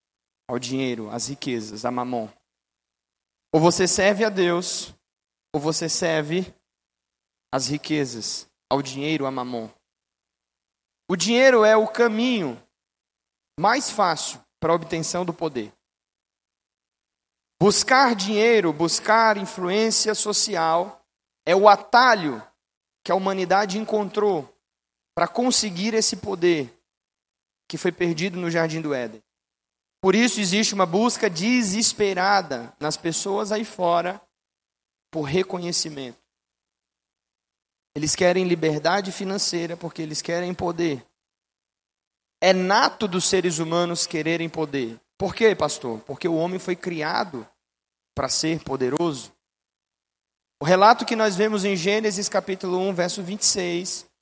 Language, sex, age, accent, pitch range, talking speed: Portuguese, male, 30-49, Brazilian, 140-205 Hz, 115 wpm